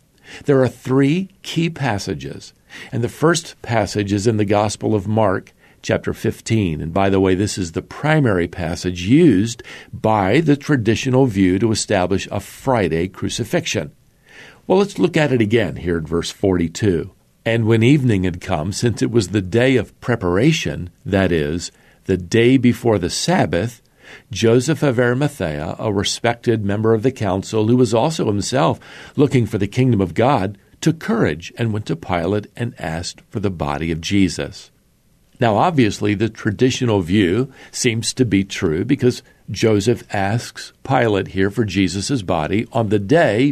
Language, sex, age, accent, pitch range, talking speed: English, male, 50-69, American, 95-125 Hz, 160 wpm